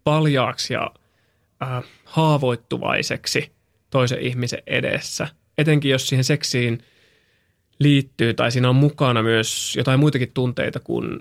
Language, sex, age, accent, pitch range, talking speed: Finnish, male, 20-39, native, 115-145 Hz, 110 wpm